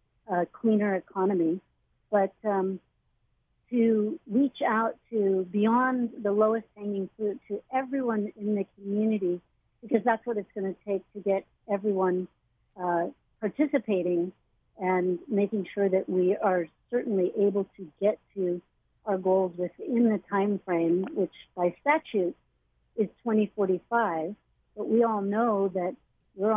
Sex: female